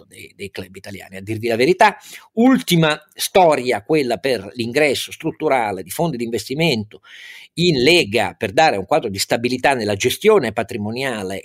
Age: 50-69